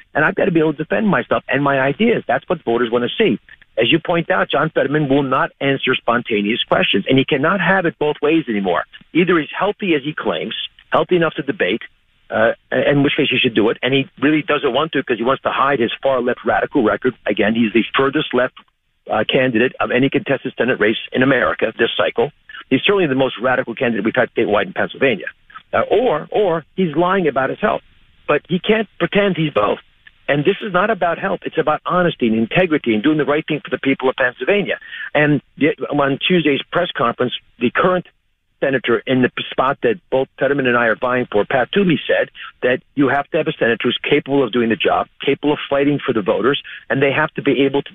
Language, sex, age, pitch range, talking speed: English, male, 50-69, 130-170 Hz, 225 wpm